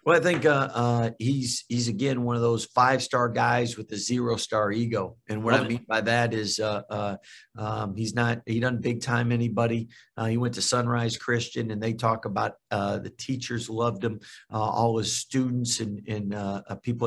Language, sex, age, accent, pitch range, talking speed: English, male, 50-69, American, 105-120 Hz, 195 wpm